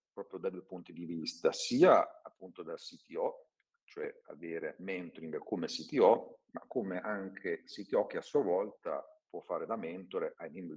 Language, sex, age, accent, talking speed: Italian, male, 50-69, native, 160 wpm